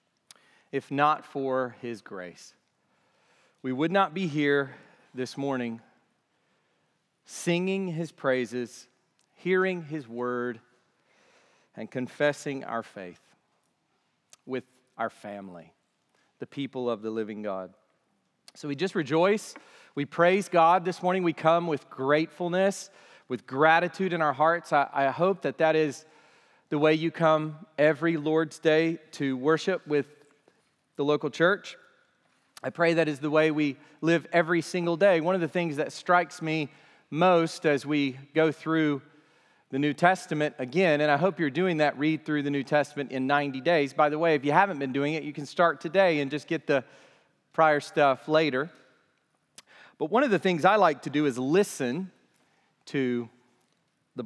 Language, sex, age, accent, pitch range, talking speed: English, male, 40-59, American, 135-170 Hz, 155 wpm